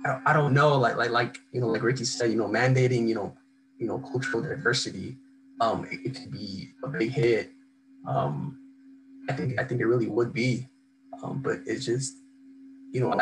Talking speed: 195 wpm